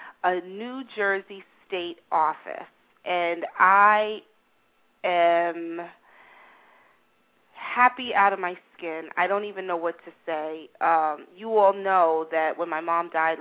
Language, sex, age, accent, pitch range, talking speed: English, female, 30-49, American, 170-210 Hz, 130 wpm